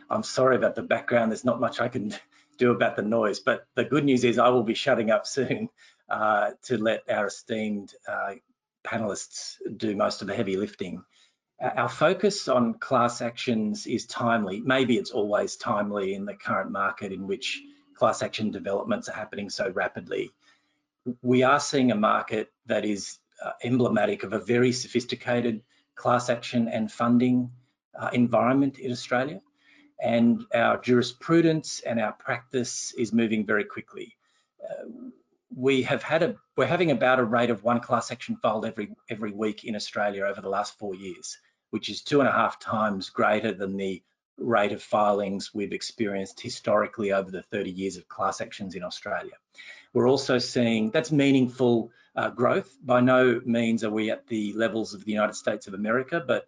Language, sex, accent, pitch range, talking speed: English, male, Australian, 110-130 Hz, 175 wpm